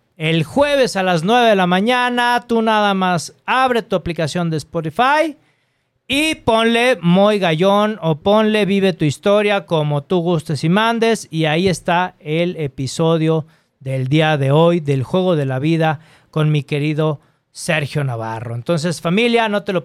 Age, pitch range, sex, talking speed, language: 40-59, 160-210 Hz, male, 165 wpm, Spanish